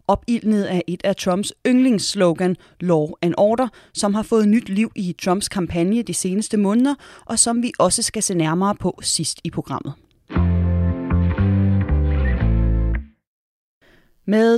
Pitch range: 170-220 Hz